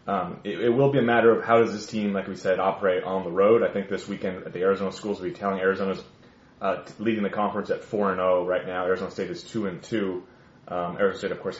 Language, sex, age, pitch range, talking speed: English, male, 30-49, 100-150 Hz, 260 wpm